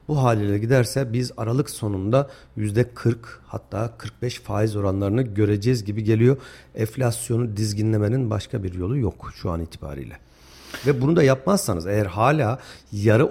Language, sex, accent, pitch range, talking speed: Turkish, male, native, 105-145 Hz, 135 wpm